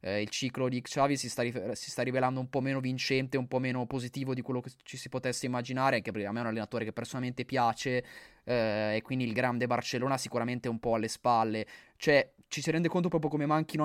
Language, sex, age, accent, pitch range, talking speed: Italian, male, 20-39, native, 115-135 Hz, 240 wpm